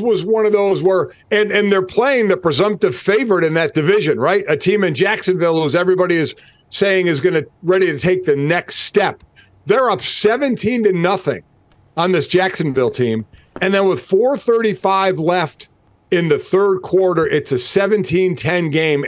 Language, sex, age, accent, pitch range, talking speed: English, male, 50-69, American, 150-195 Hz, 175 wpm